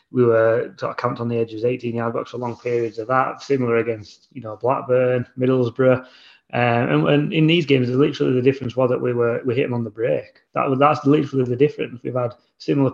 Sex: male